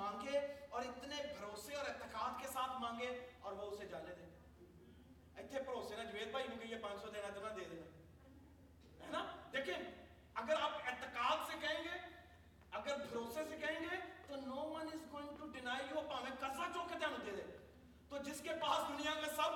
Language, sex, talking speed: Urdu, male, 45 wpm